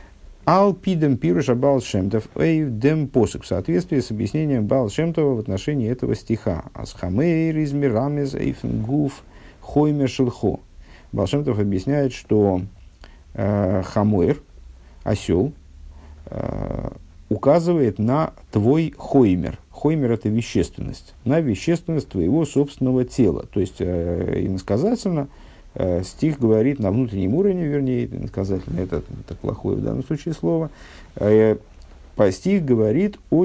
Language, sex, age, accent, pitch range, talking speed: Russian, male, 50-69, native, 95-140 Hz, 90 wpm